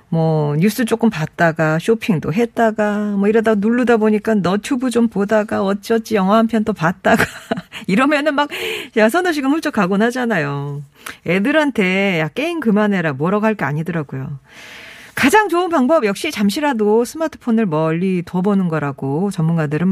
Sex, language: female, Korean